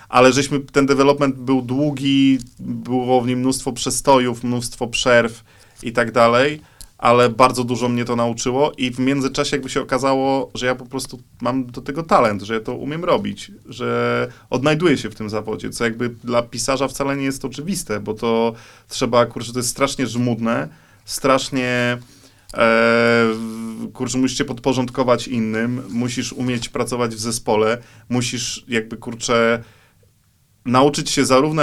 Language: Polish